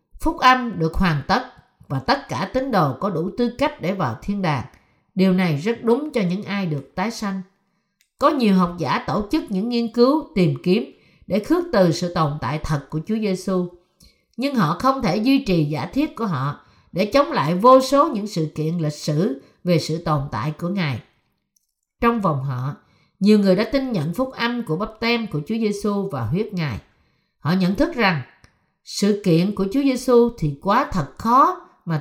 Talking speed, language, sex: 200 wpm, Vietnamese, female